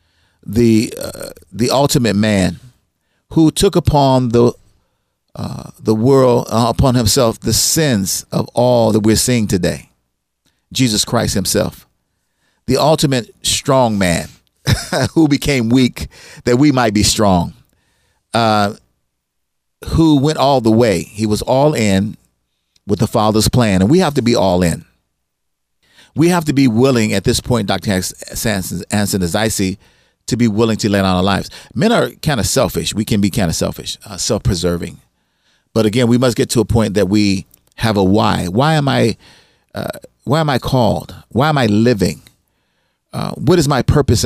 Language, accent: English, American